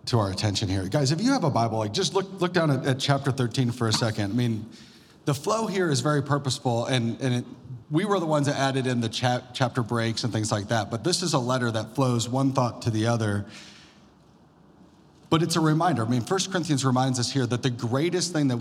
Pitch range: 120-170 Hz